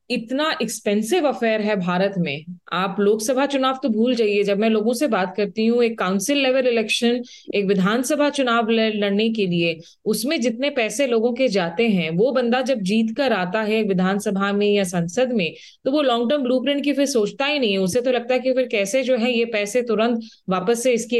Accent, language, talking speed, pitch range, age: native, Hindi, 205 wpm, 205-260 Hz, 20-39